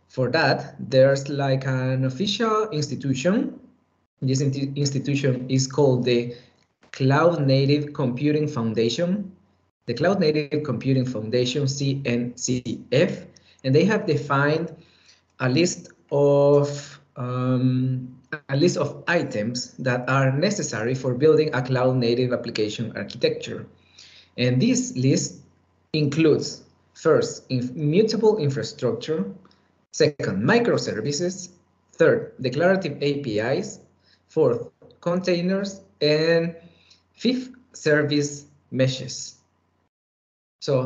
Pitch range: 125-155 Hz